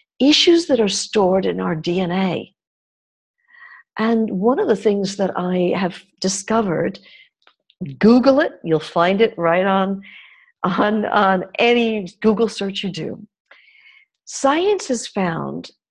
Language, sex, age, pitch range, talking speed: Hungarian, female, 50-69, 180-235 Hz, 125 wpm